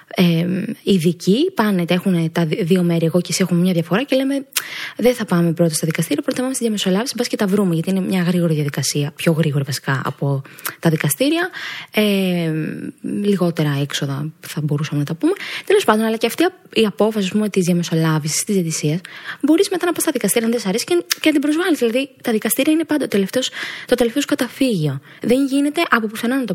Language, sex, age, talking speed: Greek, female, 20-39, 195 wpm